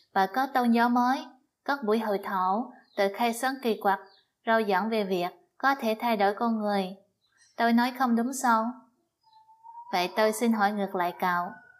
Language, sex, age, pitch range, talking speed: Vietnamese, female, 20-39, 195-240 Hz, 185 wpm